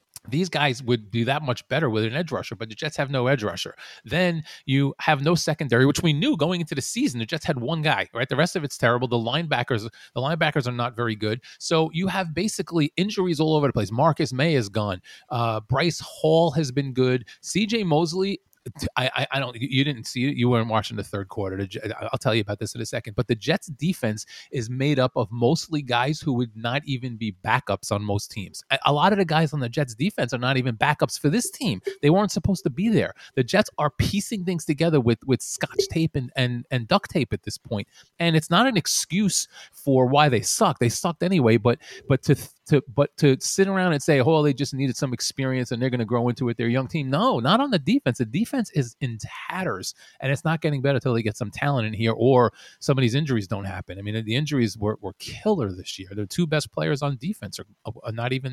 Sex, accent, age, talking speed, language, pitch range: male, American, 30-49, 245 wpm, English, 120-160 Hz